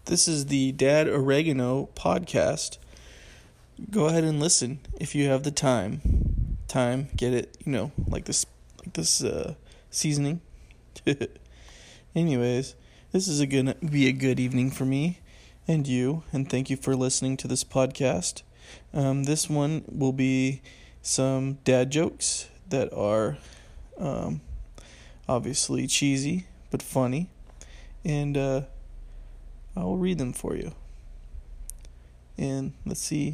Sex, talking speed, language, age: male, 130 wpm, English, 20-39